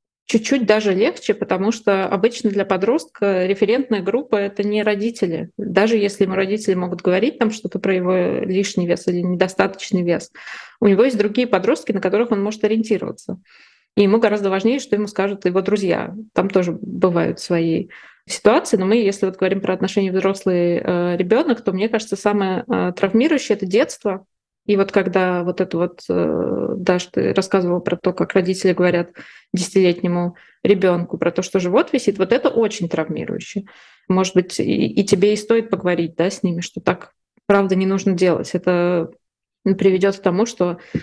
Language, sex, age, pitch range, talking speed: Russian, female, 20-39, 180-215 Hz, 170 wpm